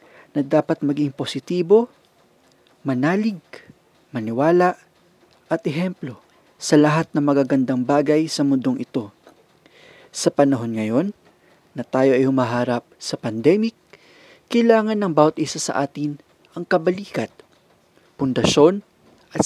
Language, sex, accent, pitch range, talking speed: English, male, Filipino, 130-180 Hz, 110 wpm